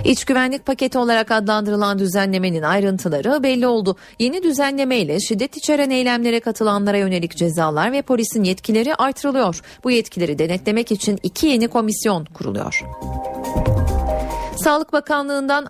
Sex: female